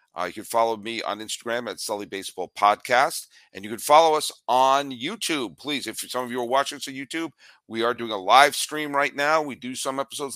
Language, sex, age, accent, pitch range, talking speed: English, male, 50-69, American, 110-145 Hz, 220 wpm